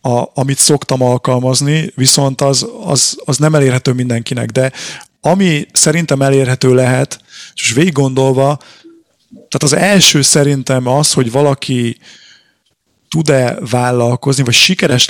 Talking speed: 120 wpm